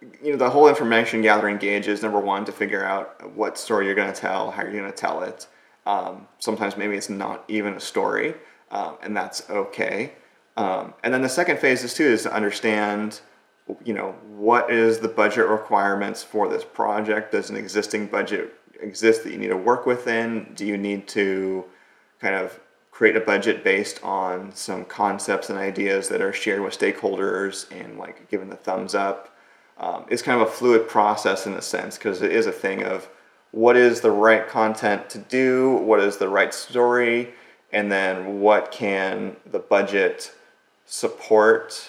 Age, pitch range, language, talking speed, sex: 30-49, 100-120 Hz, English, 185 wpm, male